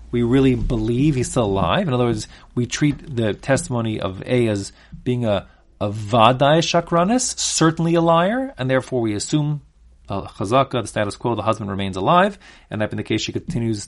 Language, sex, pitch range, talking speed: English, male, 115-160 Hz, 195 wpm